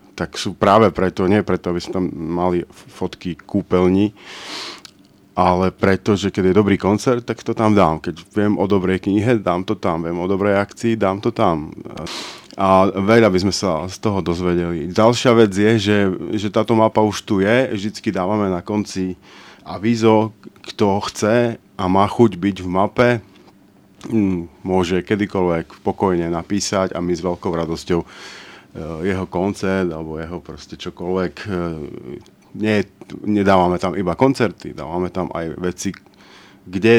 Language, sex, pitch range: Slovak, male, 90-105 Hz